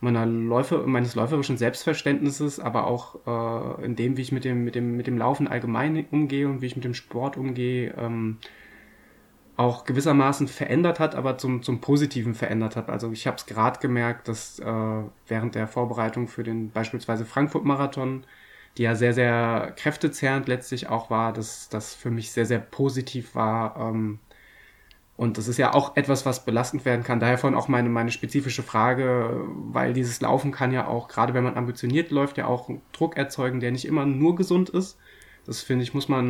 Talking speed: 190 wpm